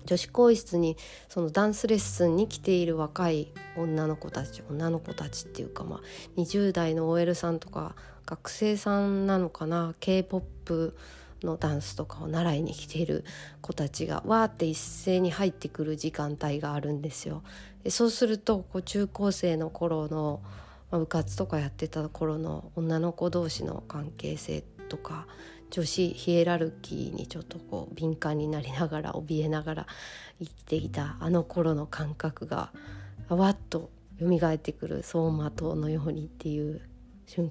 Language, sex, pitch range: Japanese, female, 150-175 Hz